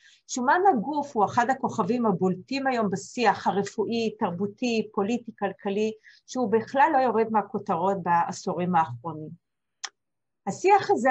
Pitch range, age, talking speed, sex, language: 195-250 Hz, 40-59, 115 wpm, female, Hebrew